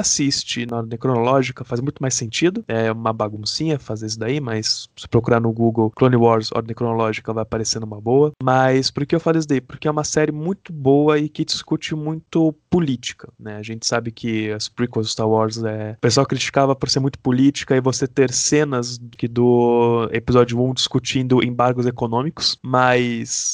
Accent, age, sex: Brazilian, 20-39, male